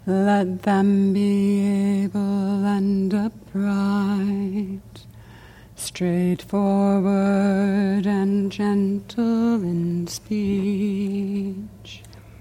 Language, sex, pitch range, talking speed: English, female, 180-200 Hz, 55 wpm